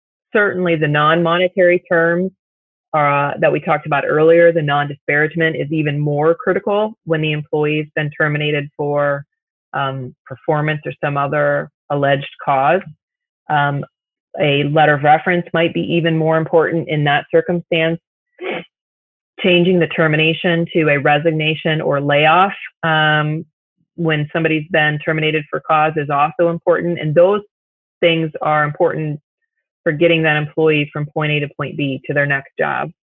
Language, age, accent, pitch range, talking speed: English, 30-49, American, 150-170 Hz, 145 wpm